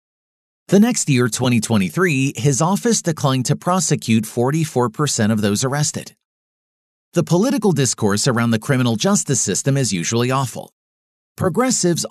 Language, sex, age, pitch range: English, male, 40-59, 115-170 Hz